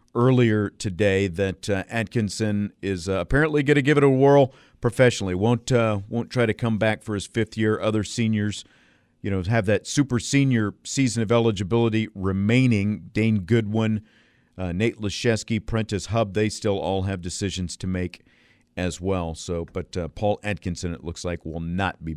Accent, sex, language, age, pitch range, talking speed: American, male, English, 50-69, 100-130 Hz, 175 wpm